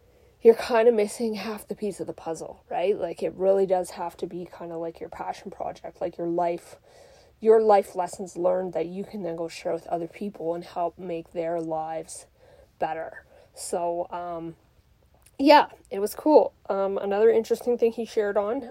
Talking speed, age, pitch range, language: 190 wpm, 20-39, 175-205 Hz, English